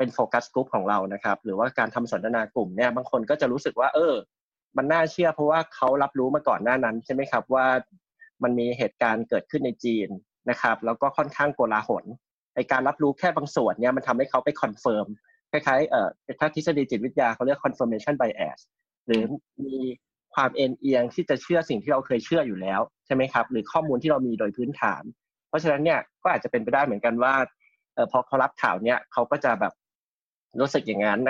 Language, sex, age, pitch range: Thai, male, 20-39, 120-155 Hz